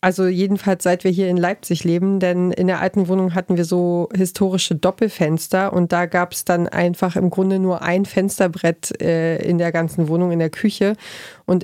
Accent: German